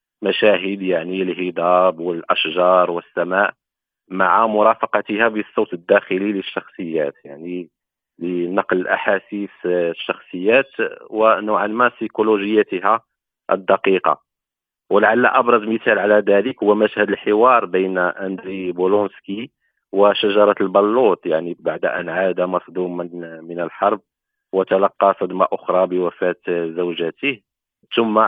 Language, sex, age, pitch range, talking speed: Arabic, male, 40-59, 90-105 Hz, 95 wpm